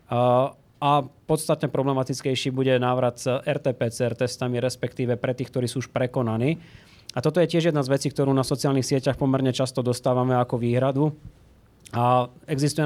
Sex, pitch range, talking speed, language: male, 120-145 Hz, 155 wpm, Slovak